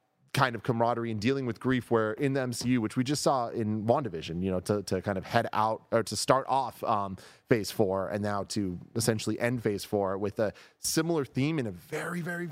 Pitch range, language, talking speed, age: 100-125 Hz, English, 225 wpm, 30-49